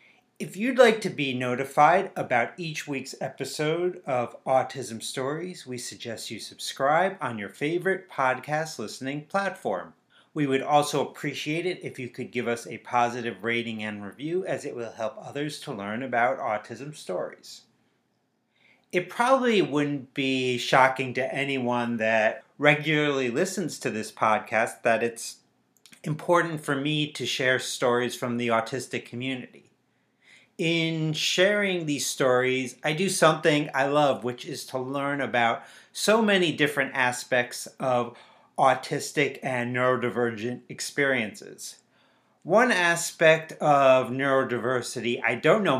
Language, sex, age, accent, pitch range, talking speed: English, male, 30-49, American, 125-155 Hz, 135 wpm